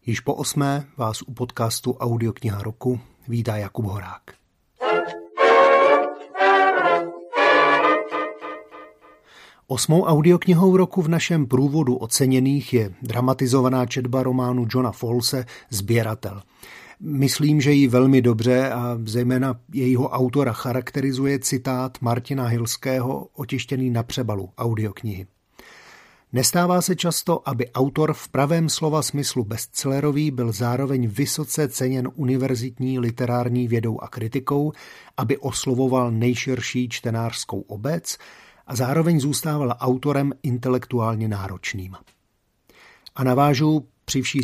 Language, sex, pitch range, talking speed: Slovak, male, 120-140 Hz, 100 wpm